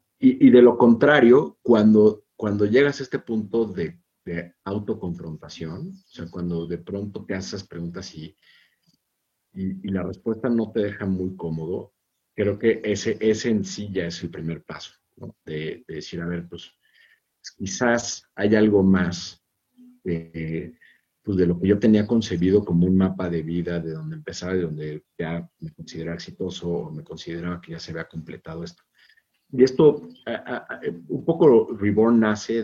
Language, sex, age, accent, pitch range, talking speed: Spanish, male, 50-69, Mexican, 85-115 Hz, 170 wpm